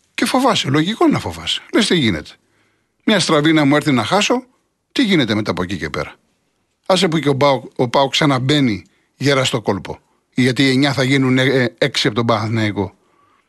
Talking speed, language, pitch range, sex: 185 wpm, Greek, 125-190 Hz, male